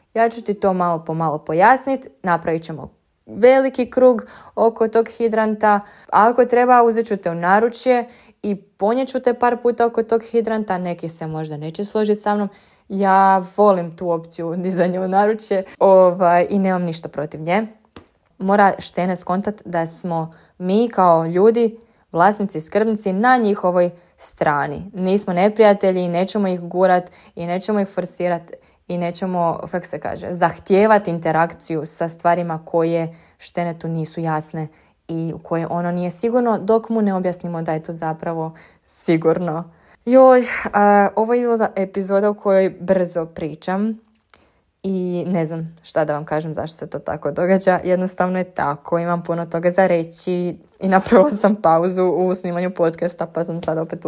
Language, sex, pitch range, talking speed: Croatian, female, 170-210 Hz, 155 wpm